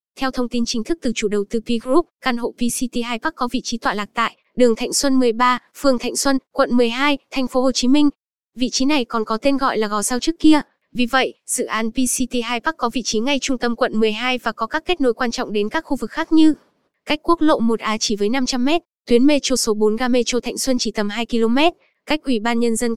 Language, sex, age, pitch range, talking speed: Vietnamese, female, 10-29, 230-270 Hz, 255 wpm